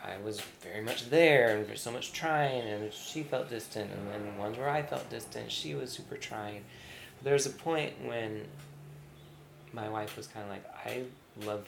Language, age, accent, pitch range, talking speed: English, 20-39, American, 105-125 Hz, 190 wpm